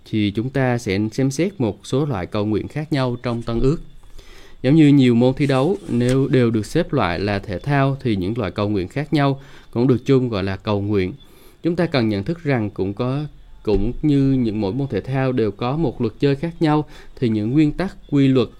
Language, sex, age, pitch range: Vietnamese, male, 20-39, 110-135 Hz